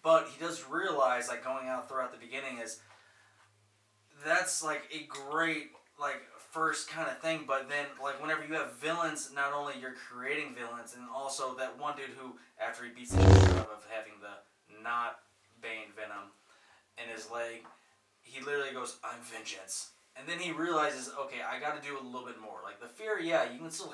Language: English